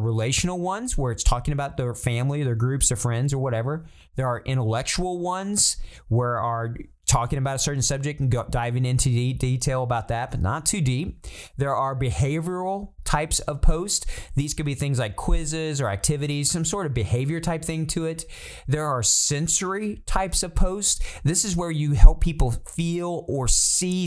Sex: male